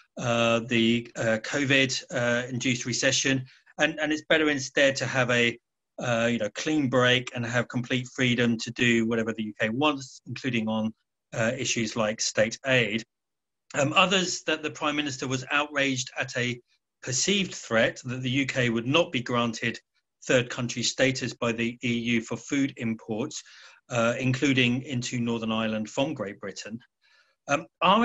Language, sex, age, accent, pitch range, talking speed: English, male, 40-59, British, 120-145 Hz, 160 wpm